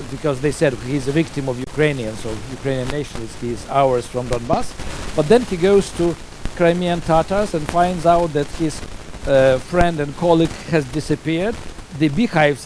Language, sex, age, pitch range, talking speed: Danish, male, 50-69, 135-175 Hz, 165 wpm